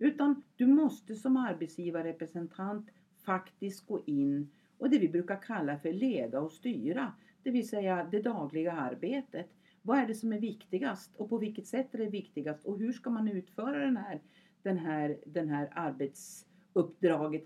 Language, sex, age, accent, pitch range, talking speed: Swedish, female, 50-69, native, 180-245 Hz, 160 wpm